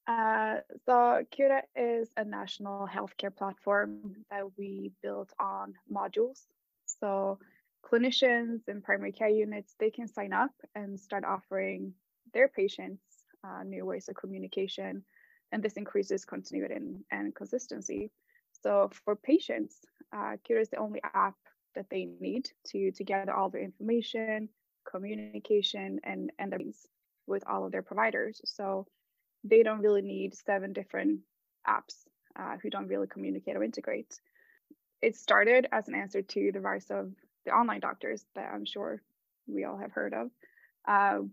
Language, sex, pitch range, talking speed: Swedish, female, 195-240 Hz, 150 wpm